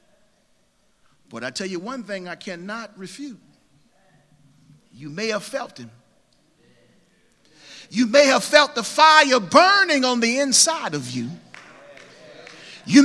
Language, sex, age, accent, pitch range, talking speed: English, male, 50-69, American, 200-300 Hz, 125 wpm